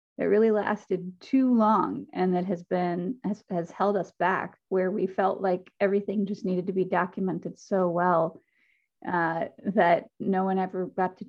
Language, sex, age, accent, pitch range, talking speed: English, female, 30-49, American, 180-210 Hz, 175 wpm